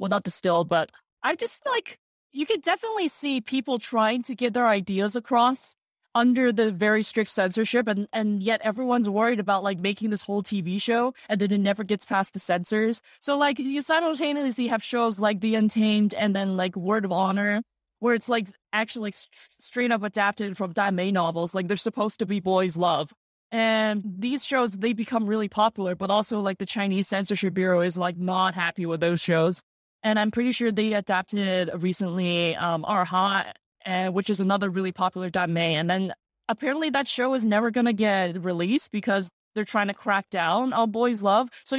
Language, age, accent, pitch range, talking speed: English, 20-39, American, 190-235 Hz, 190 wpm